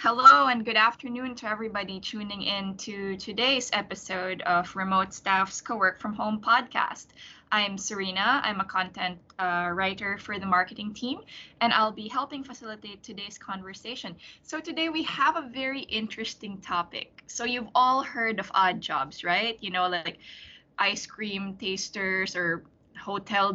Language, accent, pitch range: Filipino, native, 185-235 Hz